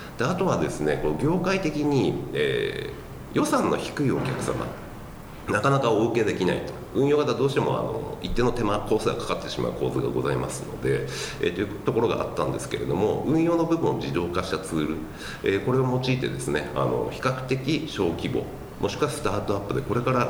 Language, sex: Japanese, male